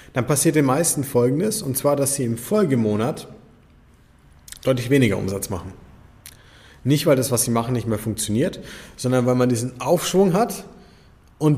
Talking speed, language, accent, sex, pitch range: 160 wpm, German, German, male, 115-155 Hz